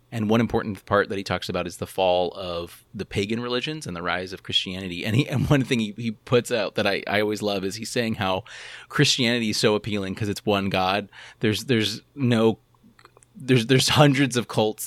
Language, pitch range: English, 95-120 Hz